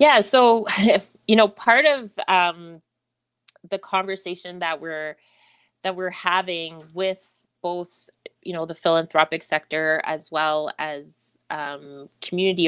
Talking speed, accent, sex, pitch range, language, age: 125 wpm, American, female, 145-175 Hz, English, 20-39